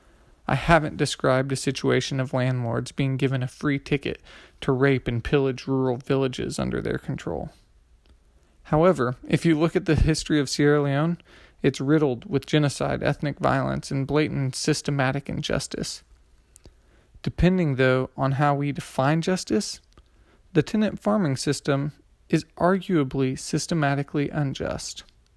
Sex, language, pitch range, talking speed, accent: male, English, 130-170 Hz, 130 wpm, American